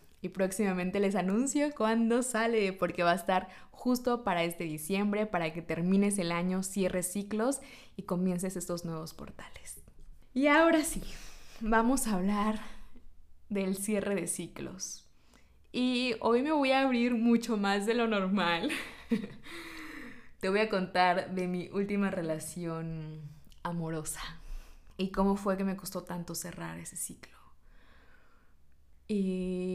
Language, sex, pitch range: Spanish, female, 170-230 Hz